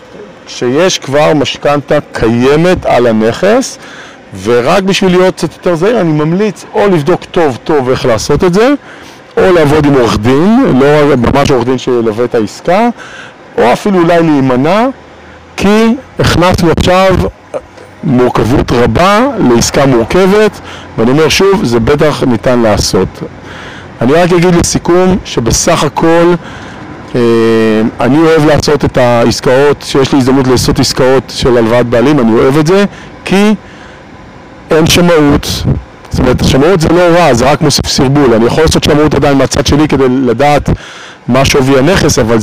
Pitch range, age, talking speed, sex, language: 125-175 Hz, 50-69, 145 wpm, male, Hebrew